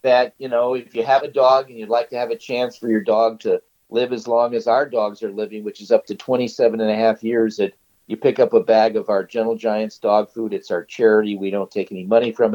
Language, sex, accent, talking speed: English, male, American, 275 wpm